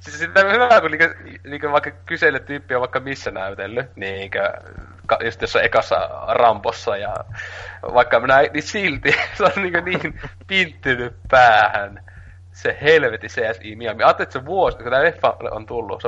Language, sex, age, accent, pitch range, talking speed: Finnish, male, 30-49, native, 90-115 Hz, 150 wpm